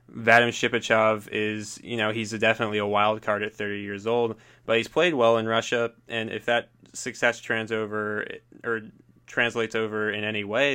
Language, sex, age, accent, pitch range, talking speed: English, male, 20-39, American, 105-115 Hz, 185 wpm